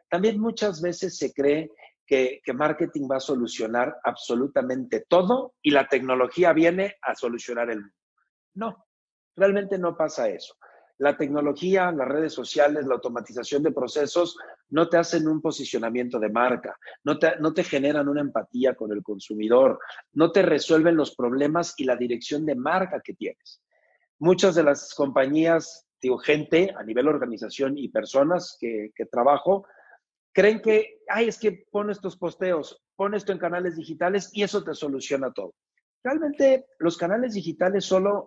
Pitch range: 135-190 Hz